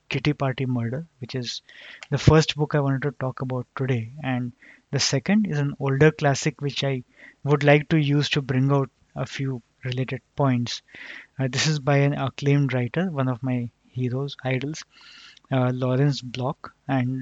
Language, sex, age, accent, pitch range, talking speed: English, male, 20-39, Indian, 125-145 Hz, 175 wpm